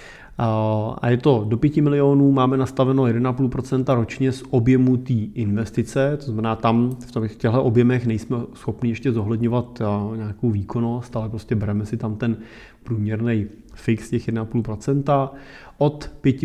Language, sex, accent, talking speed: Czech, male, native, 140 wpm